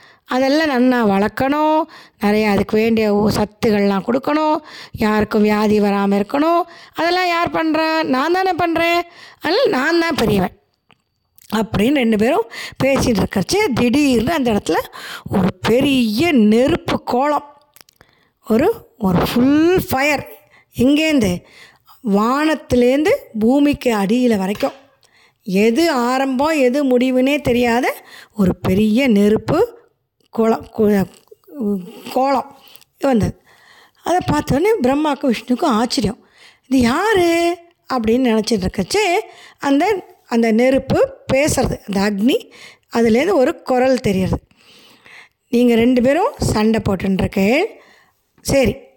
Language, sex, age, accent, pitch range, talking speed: Tamil, female, 20-39, native, 220-315 Hz, 100 wpm